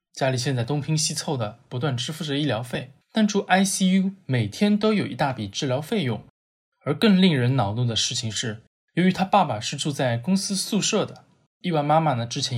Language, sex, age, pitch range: Chinese, male, 20-39, 120-165 Hz